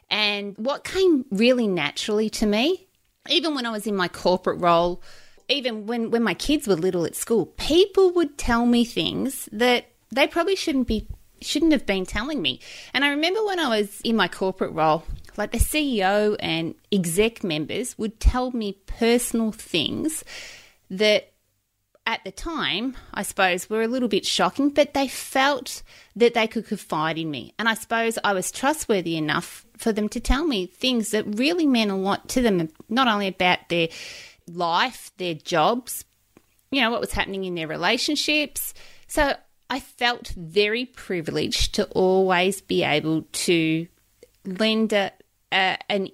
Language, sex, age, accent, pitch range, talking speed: English, female, 30-49, Australian, 185-250 Hz, 165 wpm